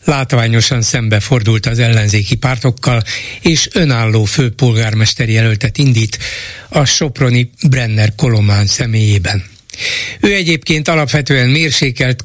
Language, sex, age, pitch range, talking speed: Hungarian, male, 60-79, 115-145 Hz, 100 wpm